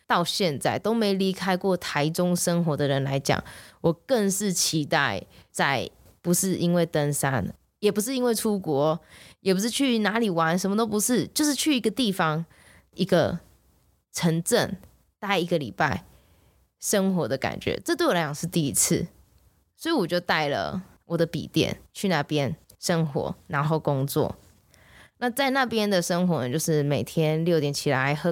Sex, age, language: female, 20-39, Chinese